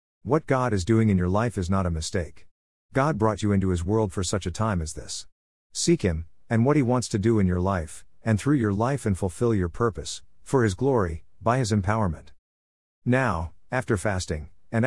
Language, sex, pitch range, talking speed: English, male, 85-115 Hz, 210 wpm